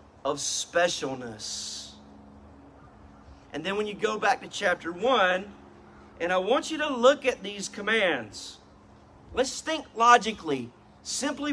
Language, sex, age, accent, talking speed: English, male, 40-59, American, 125 wpm